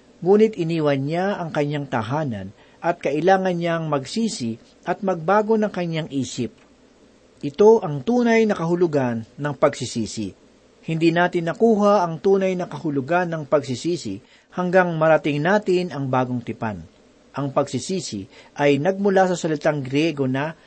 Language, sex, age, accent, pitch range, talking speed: Filipino, male, 50-69, native, 135-190 Hz, 130 wpm